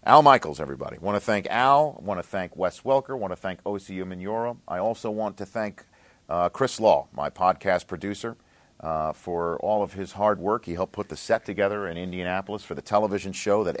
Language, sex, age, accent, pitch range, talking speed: English, male, 50-69, American, 85-105 Hz, 220 wpm